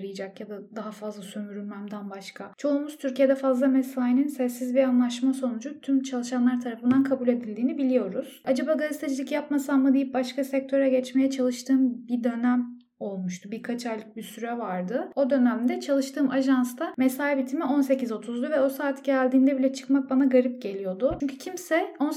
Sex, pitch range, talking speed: female, 240-275 Hz, 150 wpm